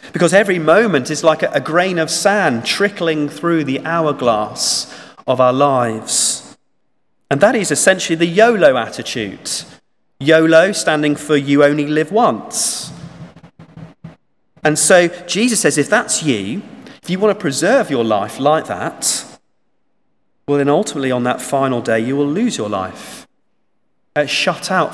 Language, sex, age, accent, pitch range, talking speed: English, male, 40-59, British, 145-205 Hz, 145 wpm